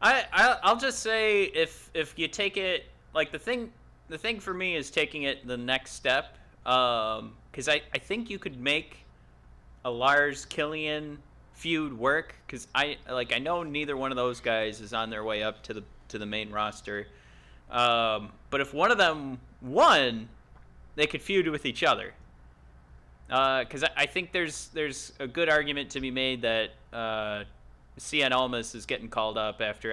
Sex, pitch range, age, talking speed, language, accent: male, 110-155 Hz, 30-49, 180 wpm, English, American